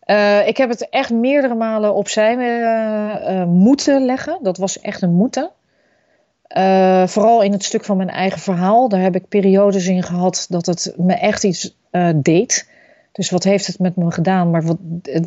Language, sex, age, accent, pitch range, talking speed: Dutch, female, 40-59, Dutch, 180-215 Hz, 195 wpm